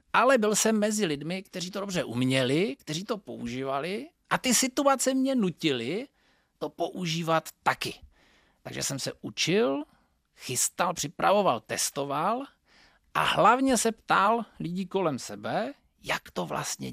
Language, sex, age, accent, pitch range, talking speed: Czech, male, 40-59, native, 140-225 Hz, 130 wpm